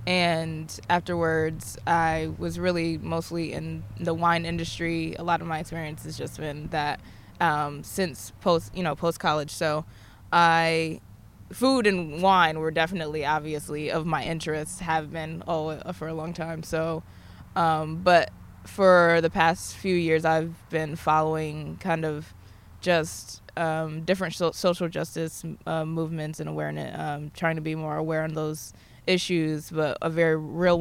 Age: 20-39